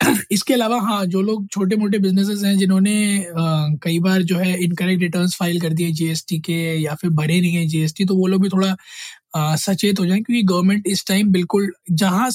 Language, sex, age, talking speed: Hindi, male, 20-39, 205 wpm